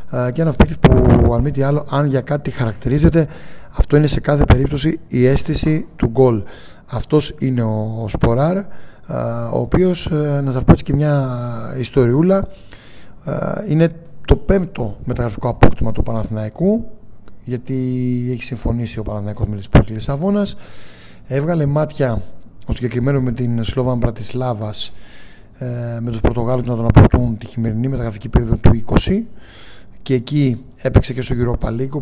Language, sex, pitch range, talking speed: Greek, male, 115-150 Hz, 145 wpm